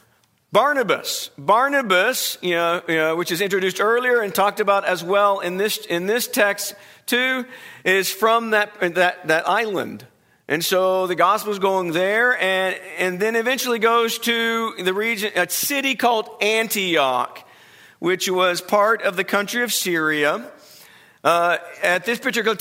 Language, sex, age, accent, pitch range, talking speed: English, male, 50-69, American, 175-220 Hz, 150 wpm